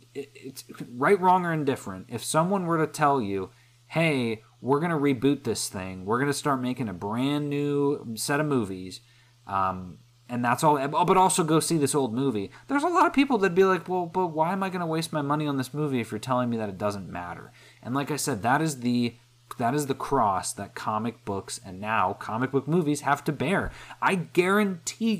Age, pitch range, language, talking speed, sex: 30-49, 110-150 Hz, English, 220 wpm, male